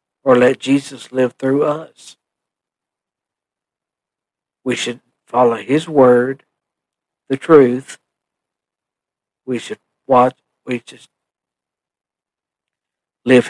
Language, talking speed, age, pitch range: English, 85 wpm, 60-79, 120-145 Hz